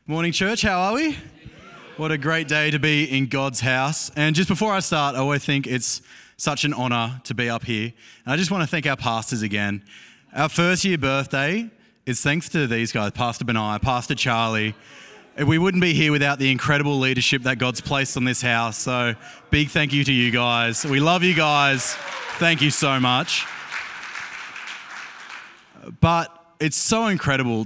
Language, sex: English, male